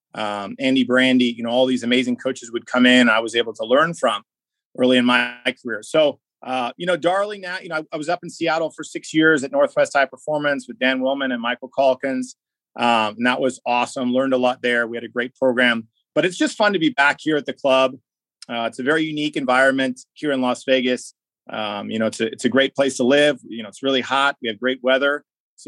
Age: 30-49